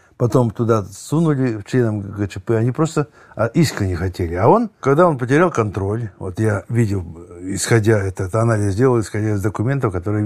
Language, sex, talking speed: Russian, male, 150 wpm